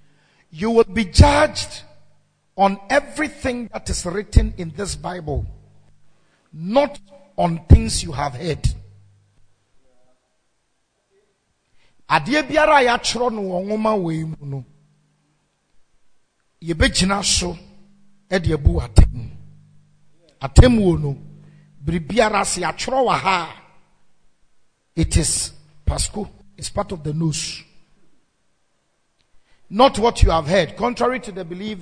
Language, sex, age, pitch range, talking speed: English, male, 50-69, 140-200 Hz, 95 wpm